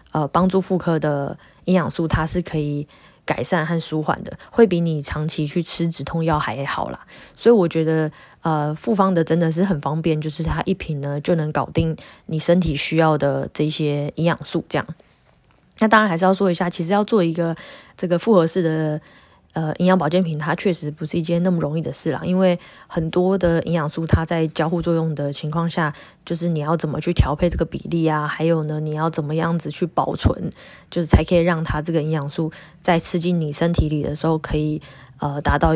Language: Chinese